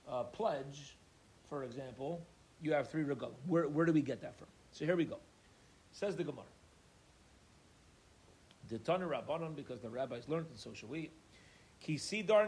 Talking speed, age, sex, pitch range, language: 150 wpm, 40-59, male, 135-180 Hz, English